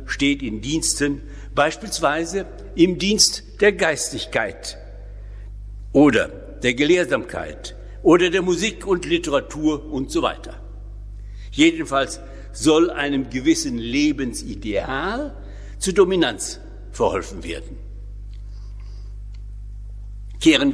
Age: 60-79